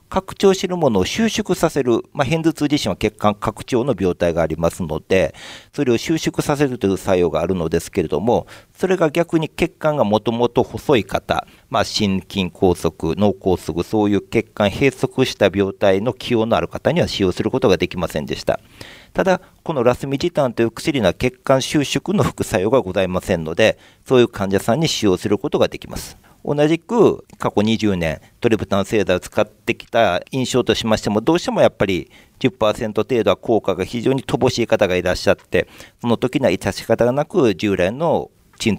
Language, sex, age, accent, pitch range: Japanese, male, 50-69, native, 95-140 Hz